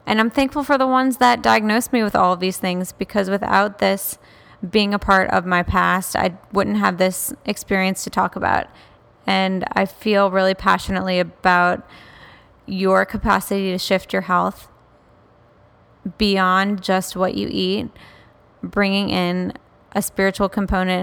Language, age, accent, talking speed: English, 10-29, American, 150 wpm